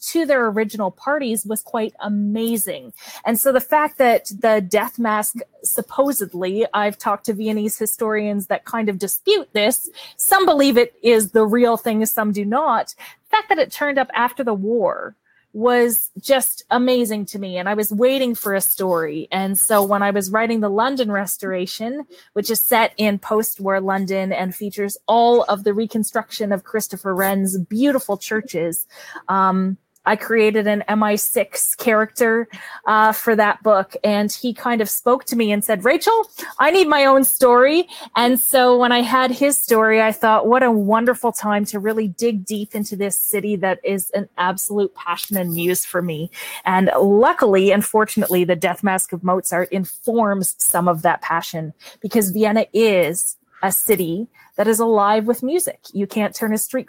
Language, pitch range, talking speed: English, 195-240 Hz, 175 wpm